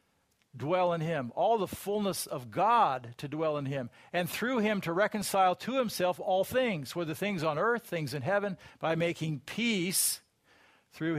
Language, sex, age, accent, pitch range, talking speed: English, male, 50-69, American, 145-185 Hz, 170 wpm